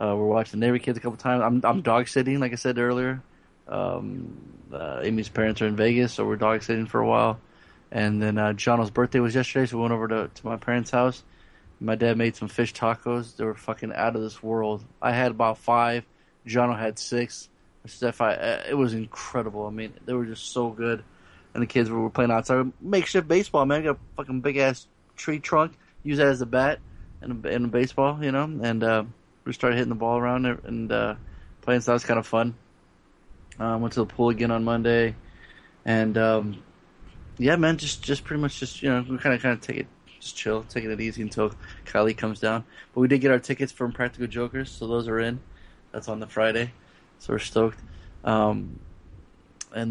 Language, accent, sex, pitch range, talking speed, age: English, American, male, 110-125 Hz, 215 wpm, 20-39